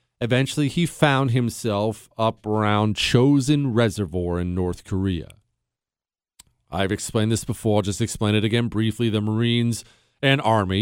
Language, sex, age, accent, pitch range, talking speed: English, male, 40-59, American, 105-135 Hz, 140 wpm